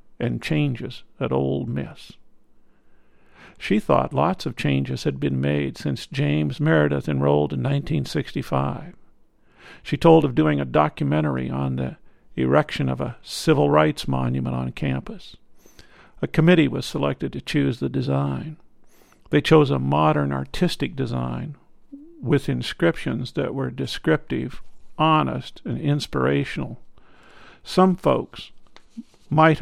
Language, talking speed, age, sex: English, 120 wpm, 50-69, male